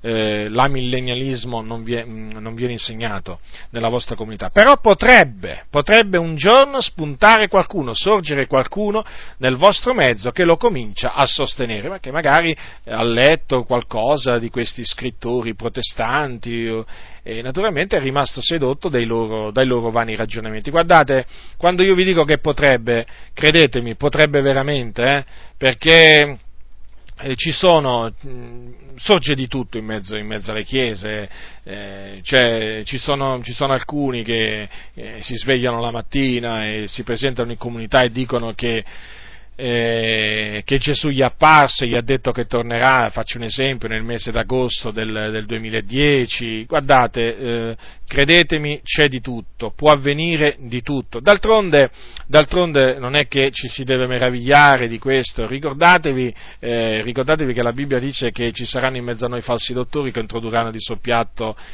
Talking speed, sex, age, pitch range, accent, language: 150 wpm, male, 40-59, 115-145 Hz, native, Italian